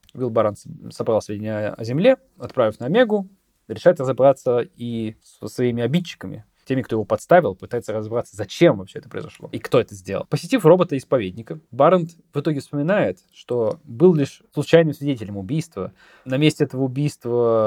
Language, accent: Russian, native